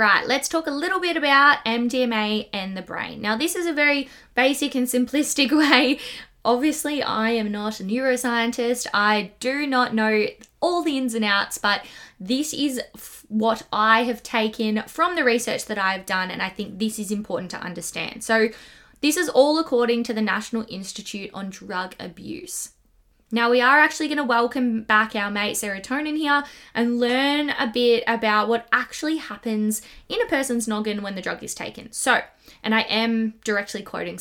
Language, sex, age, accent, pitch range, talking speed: English, female, 20-39, Australian, 215-275 Hz, 180 wpm